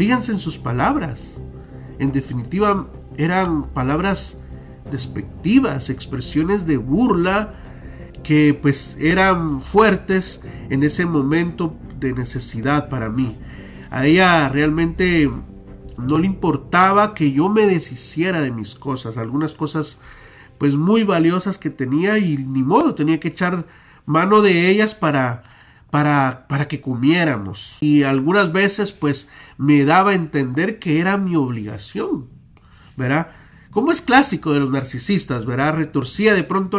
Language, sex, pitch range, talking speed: Spanish, male, 135-185 Hz, 130 wpm